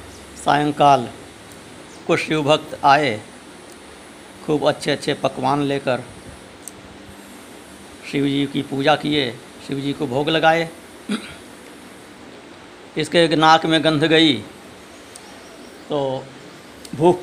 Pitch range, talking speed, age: 140-165 Hz, 85 wpm, 60-79